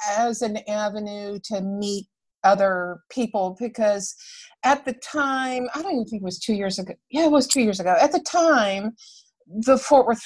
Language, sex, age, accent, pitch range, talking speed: English, female, 50-69, American, 195-245 Hz, 185 wpm